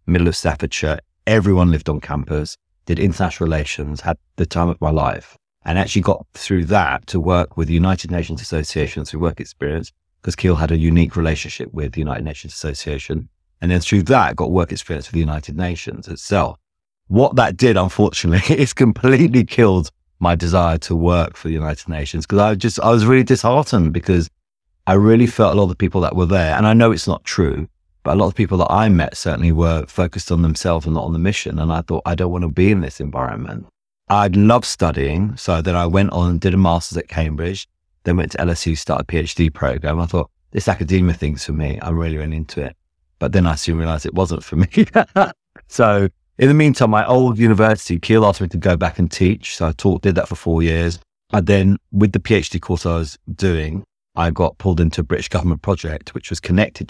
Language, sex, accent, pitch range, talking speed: English, male, British, 80-95 Hz, 220 wpm